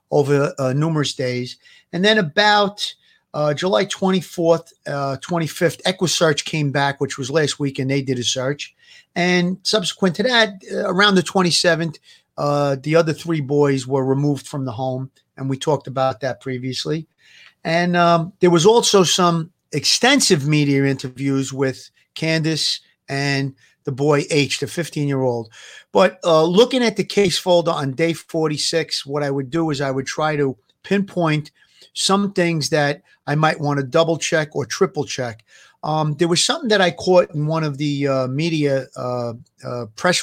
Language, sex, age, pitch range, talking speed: English, male, 40-59, 140-180 Hz, 170 wpm